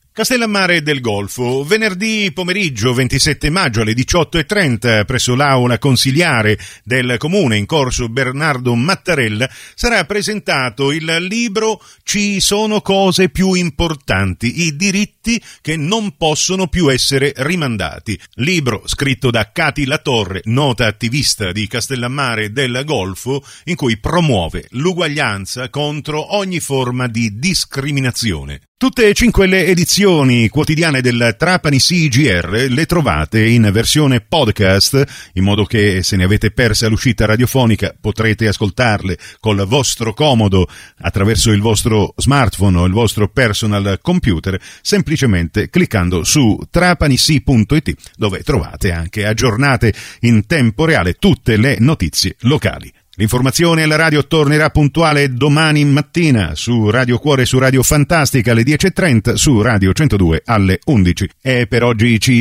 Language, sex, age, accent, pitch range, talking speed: Italian, male, 50-69, native, 105-150 Hz, 125 wpm